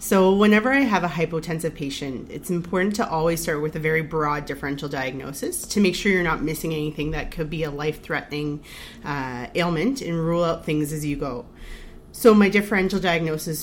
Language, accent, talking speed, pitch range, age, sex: English, American, 185 wpm, 145-185 Hz, 30-49, female